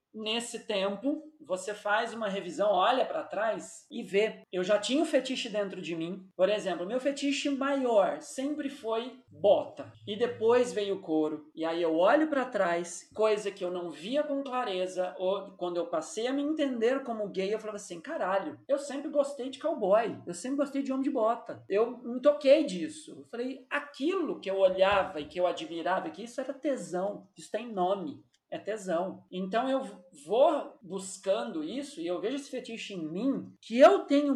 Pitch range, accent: 190-270 Hz, Brazilian